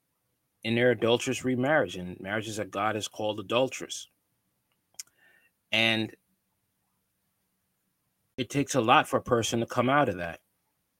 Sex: male